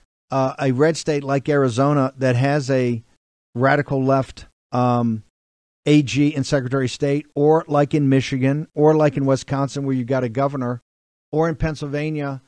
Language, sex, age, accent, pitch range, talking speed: English, male, 50-69, American, 130-155 Hz, 160 wpm